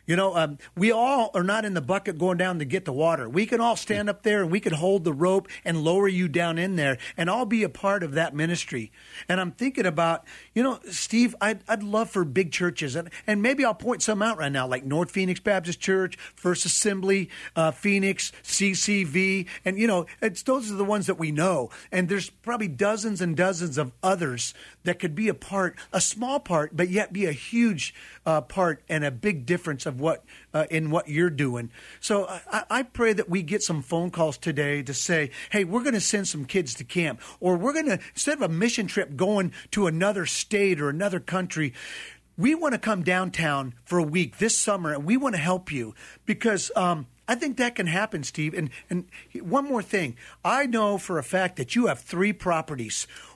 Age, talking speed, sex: 40-59, 220 wpm, male